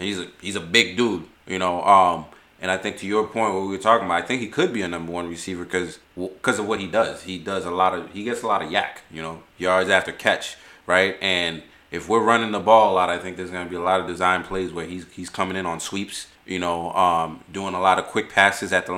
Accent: American